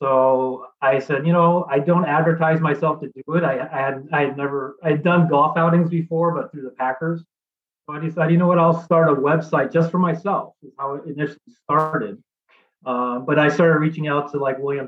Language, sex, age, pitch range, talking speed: English, male, 30-49, 140-165 Hz, 220 wpm